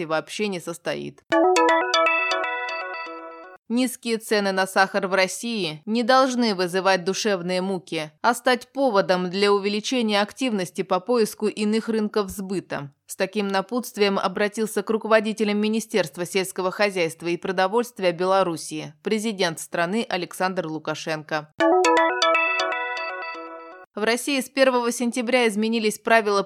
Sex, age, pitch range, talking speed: female, 20-39, 175-225 Hz, 110 wpm